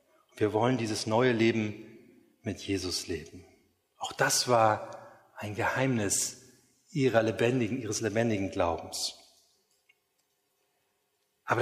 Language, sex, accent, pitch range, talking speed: German, male, German, 115-150 Hz, 100 wpm